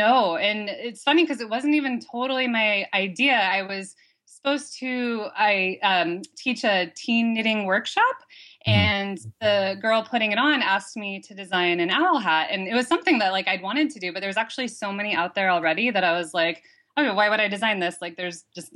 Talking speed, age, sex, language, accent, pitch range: 215 wpm, 20-39, female, English, American, 175-240 Hz